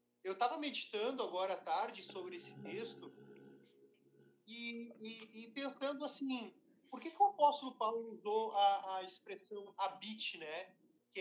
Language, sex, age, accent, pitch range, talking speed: Portuguese, male, 40-59, Brazilian, 195-270 Hz, 145 wpm